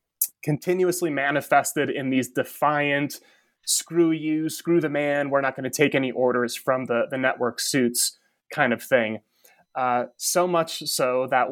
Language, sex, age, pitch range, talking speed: English, male, 20-39, 130-155 Hz, 155 wpm